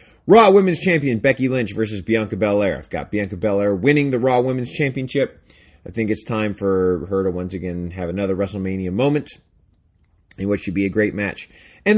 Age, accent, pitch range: 30-49, American, 95-135 Hz